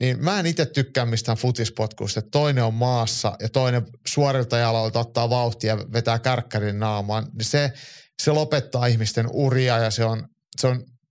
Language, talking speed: Finnish, 165 wpm